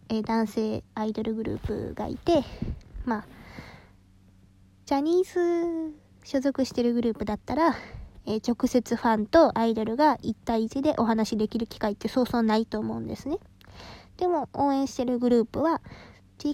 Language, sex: Japanese, female